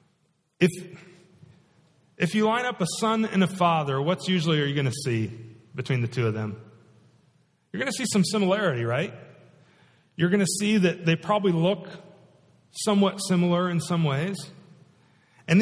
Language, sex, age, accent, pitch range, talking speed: English, male, 40-59, American, 165-210 Hz, 165 wpm